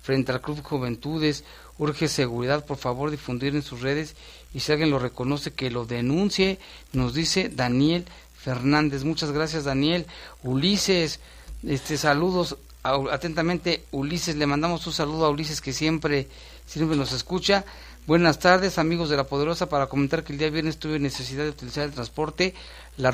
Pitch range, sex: 135-160 Hz, male